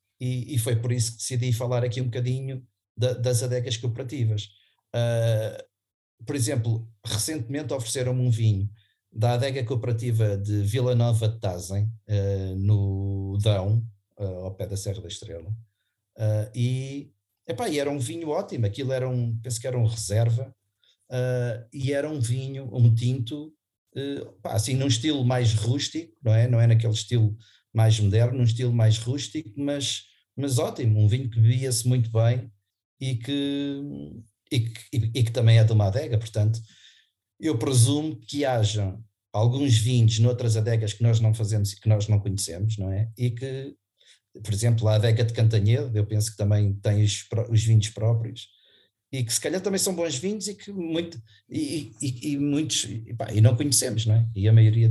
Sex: male